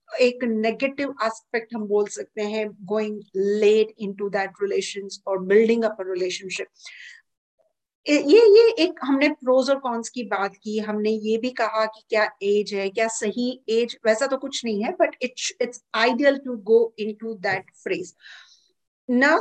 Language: Hindi